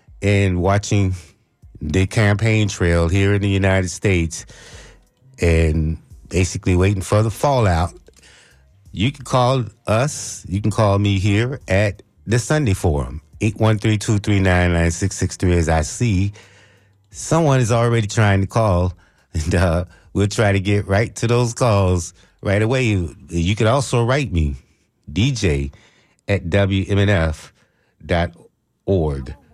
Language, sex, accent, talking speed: English, male, American, 125 wpm